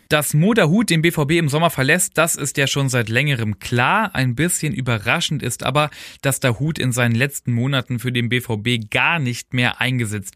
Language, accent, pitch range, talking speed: German, German, 120-150 Hz, 195 wpm